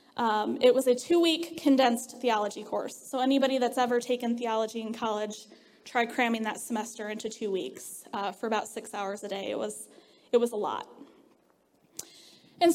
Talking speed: 170 wpm